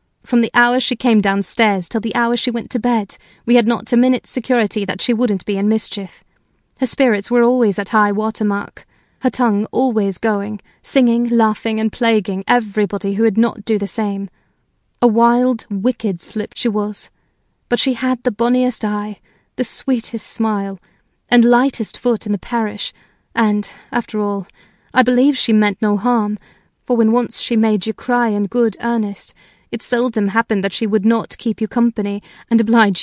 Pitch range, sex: 205-240 Hz, female